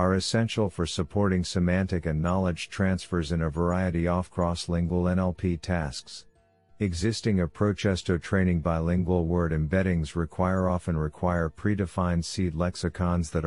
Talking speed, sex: 130 wpm, male